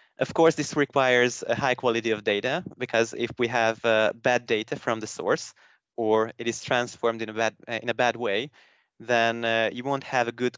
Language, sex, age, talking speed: English, male, 20-39, 210 wpm